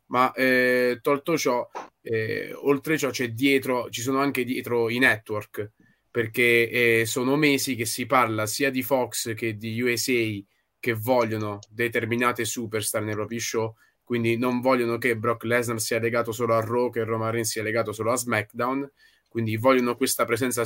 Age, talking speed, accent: 20-39, 165 wpm, native